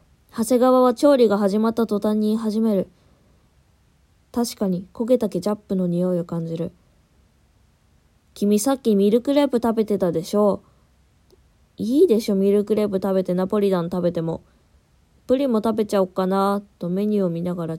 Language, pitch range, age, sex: Japanese, 180-225 Hz, 20-39, female